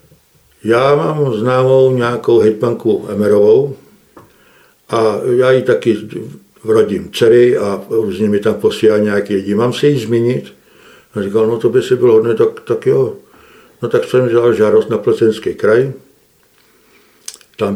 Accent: native